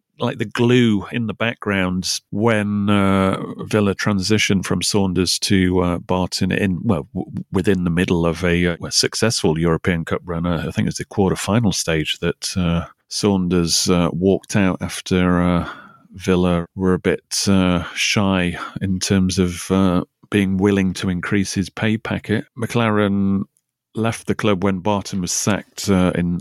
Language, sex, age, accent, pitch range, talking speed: English, male, 30-49, British, 95-120 Hz, 155 wpm